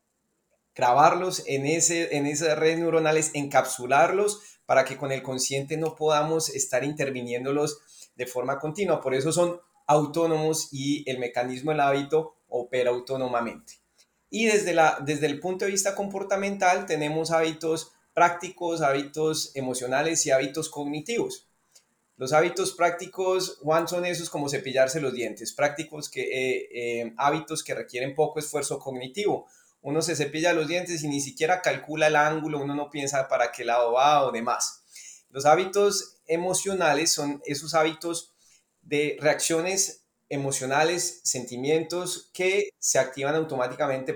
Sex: male